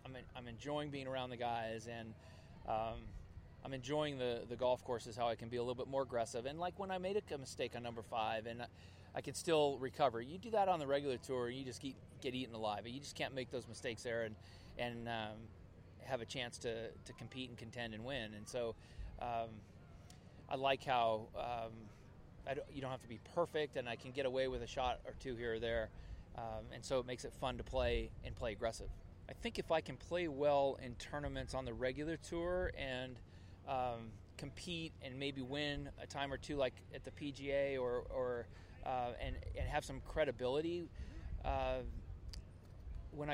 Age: 20-39